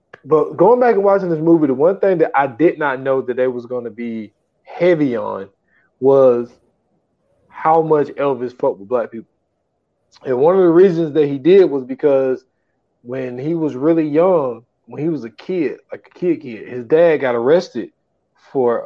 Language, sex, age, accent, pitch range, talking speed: English, male, 20-39, American, 135-170 Hz, 190 wpm